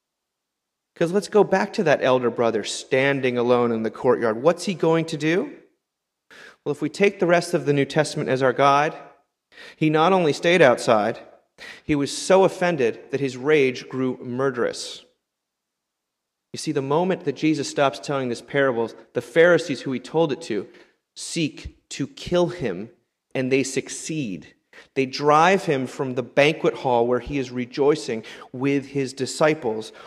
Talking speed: 165 wpm